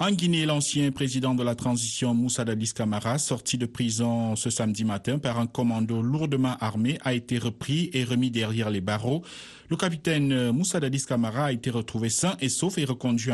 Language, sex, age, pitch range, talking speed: French, male, 50-69, 115-135 Hz, 190 wpm